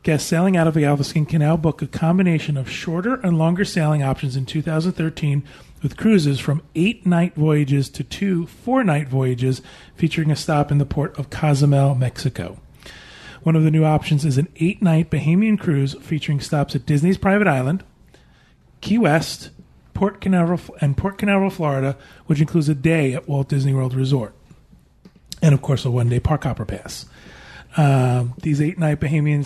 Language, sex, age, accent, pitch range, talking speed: English, male, 30-49, American, 135-160 Hz, 165 wpm